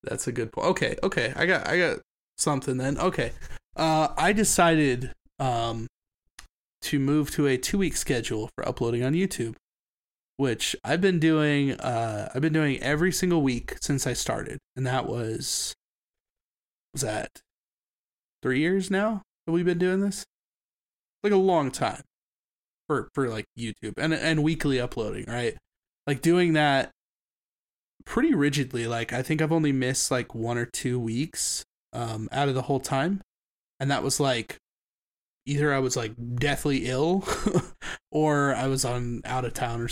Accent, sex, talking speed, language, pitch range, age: American, male, 160 wpm, English, 125-160 Hz, 20-39